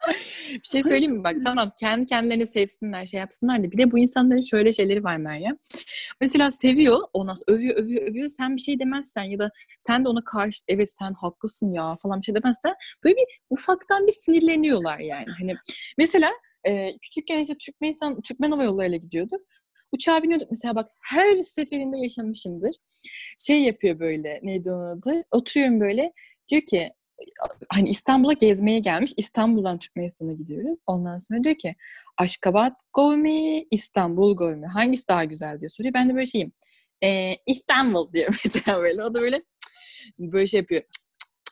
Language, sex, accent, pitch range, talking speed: Turkish, female, native, 190-280 Hz, 165 wpm